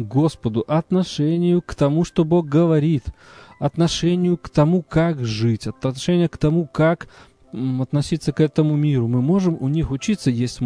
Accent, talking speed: native, 150 wpm